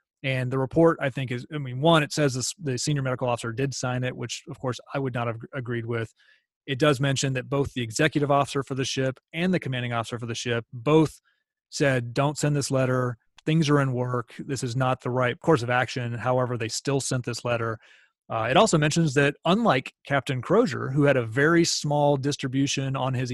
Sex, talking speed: male, 220 wpm